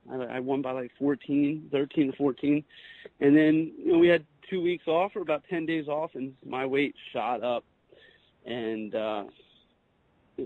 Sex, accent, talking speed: male, American, 170 wpm